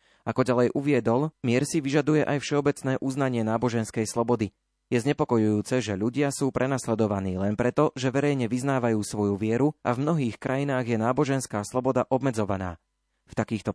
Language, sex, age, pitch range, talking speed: Slovak, male, 30-49, 110-130 Hz, 150 wpm